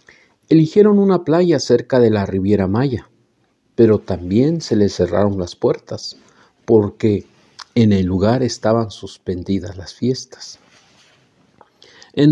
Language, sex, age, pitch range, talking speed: Spanish, male, 50-69, 100-140 Hz, 115 wpm